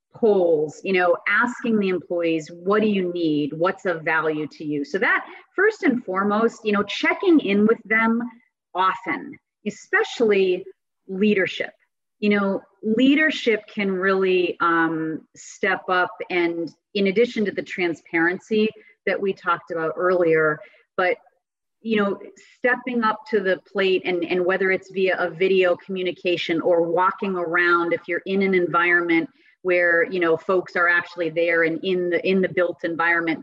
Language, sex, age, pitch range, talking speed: English, female, 30-49, 175-210 Hz, 155 wpm